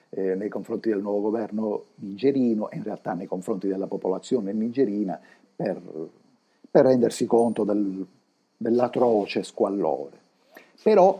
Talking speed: 115 wpm